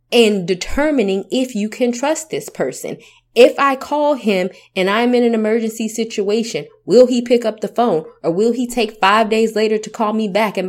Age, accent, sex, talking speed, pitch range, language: 20-39, American, female, 200 wpm, 170-225 Hz, English